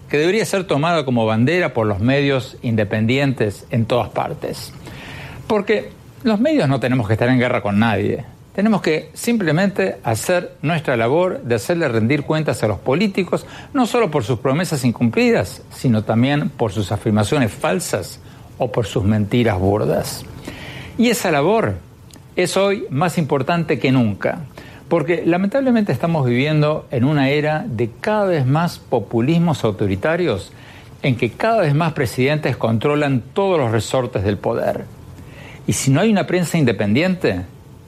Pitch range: 115-165 Hz